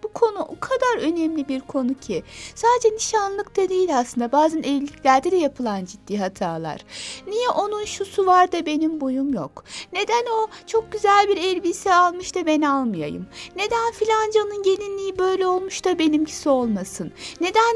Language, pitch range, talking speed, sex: Turkish, 265-400 Hz, 150 wpm, female